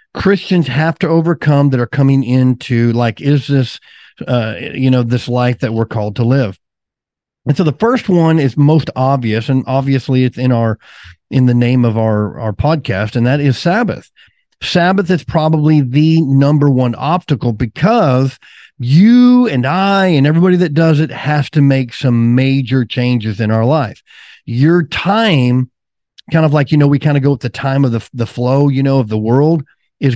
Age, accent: 50-69, American